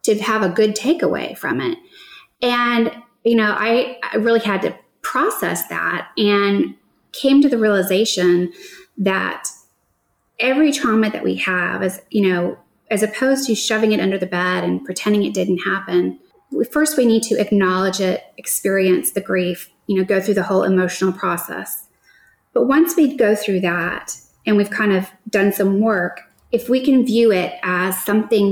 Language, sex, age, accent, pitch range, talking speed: English, female, 20-39, American, 190-230 Hz, 170 wpm